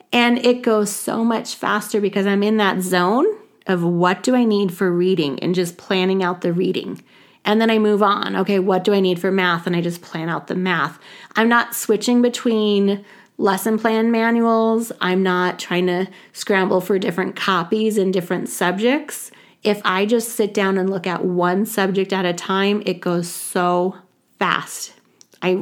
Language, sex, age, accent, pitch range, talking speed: English, female, 30-49, American, 180-220 Hz, 185 wpm